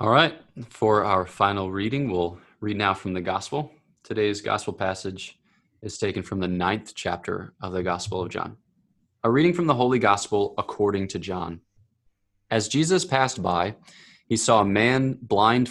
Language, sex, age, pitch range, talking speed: English, male, 20-39, 95-120 Hz, 170 wpm